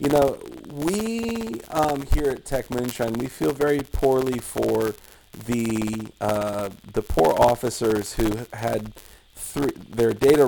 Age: 40-59